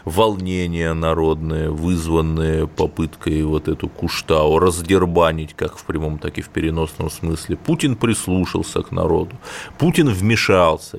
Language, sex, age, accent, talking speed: Russian, male, 30-49, native, 120 wpm